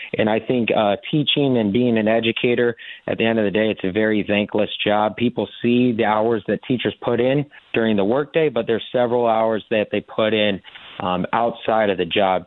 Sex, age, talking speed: male, 30-49, 210 wpm